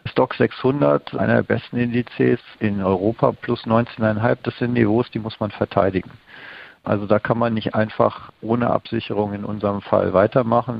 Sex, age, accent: male, 50-69, German